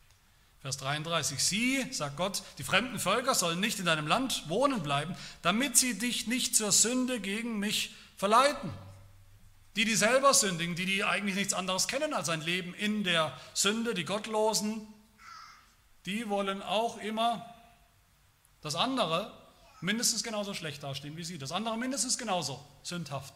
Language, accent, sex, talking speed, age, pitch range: German, German, male, 150 wpm, 40-59, 130-200 Hz